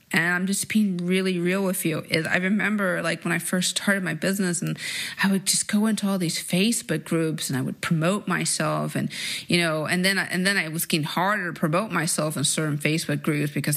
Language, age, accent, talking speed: English, 30-49, American, 230 wpm